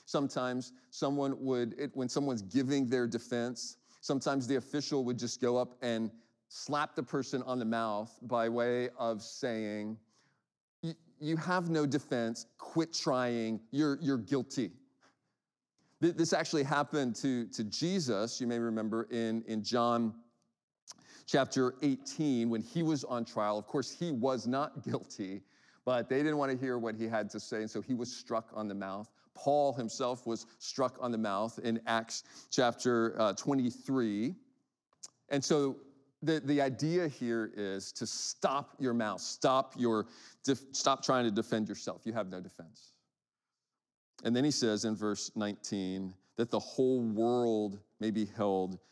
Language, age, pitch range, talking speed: English, 40-59, 110-135 Hz, 155 wpm